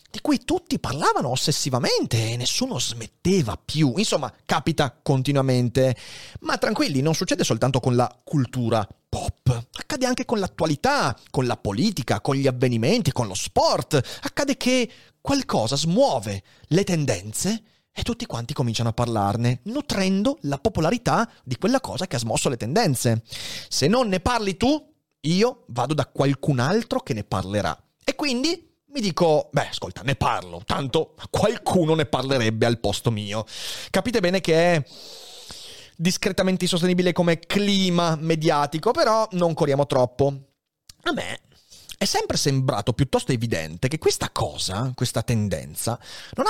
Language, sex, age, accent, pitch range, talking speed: Italian, male, 30-49, native, 120-180 Hz, 145 wpm